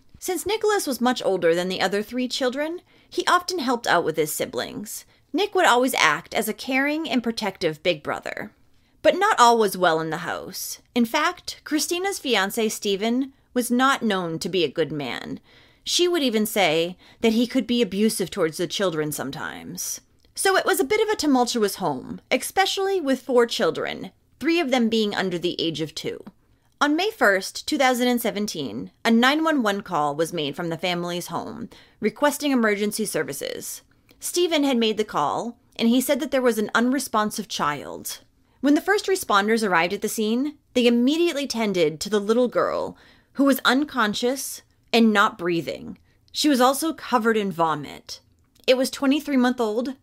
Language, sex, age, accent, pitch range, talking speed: English, female, 30-49, American, 195-280 Hz, 175 wpm